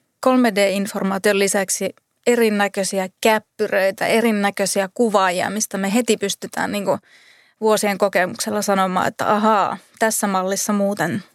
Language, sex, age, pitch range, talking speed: Finnish, female, 20-39, 200-230 Hz, 100 wpm